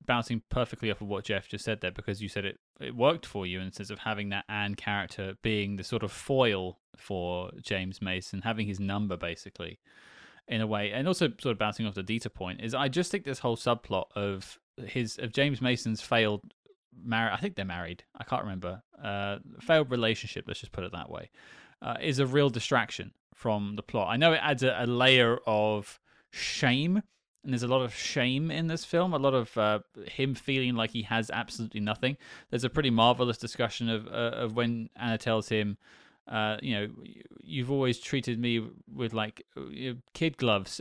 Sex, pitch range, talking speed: male, 105-130 Hz, 205 wpm